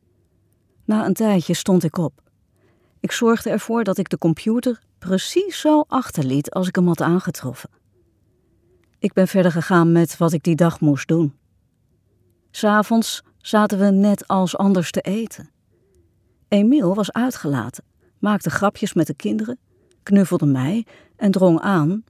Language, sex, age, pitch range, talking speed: Dutch, female, 40-59, 140-200 Hz, 145 wpm